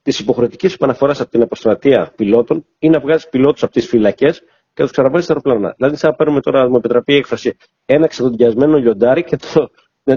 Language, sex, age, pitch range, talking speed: Greek, male, 40-59, 120-155 Hz, 205 wpm